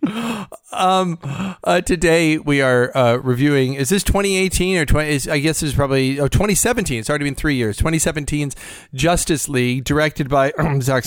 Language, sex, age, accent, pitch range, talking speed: English, male, 30-49, American, 115-150 Hz, 170 wpm